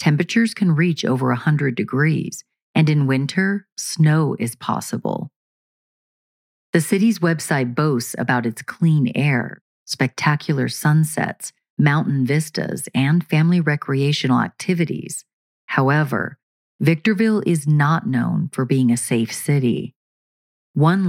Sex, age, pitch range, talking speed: female, 40-59, 130-165 Hz, 110 wpm